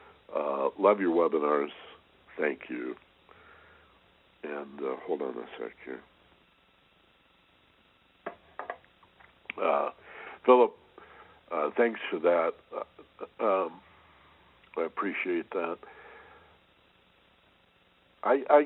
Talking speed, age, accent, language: 80 wpm, 60-79, American, English